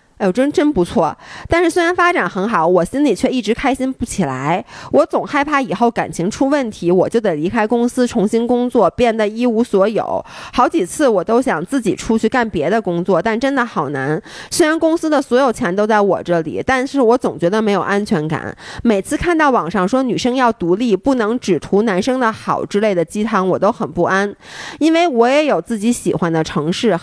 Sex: female